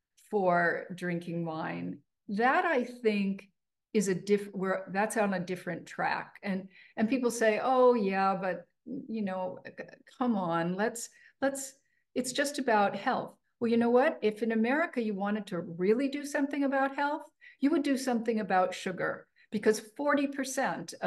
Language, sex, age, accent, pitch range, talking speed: English, female, 50-69, American, 180-255 Hz, 155 wpm